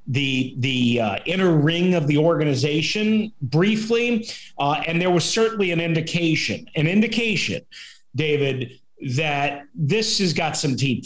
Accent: American